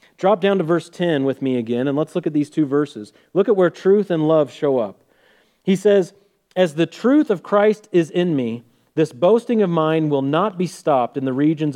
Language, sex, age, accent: English, male, 40-59, American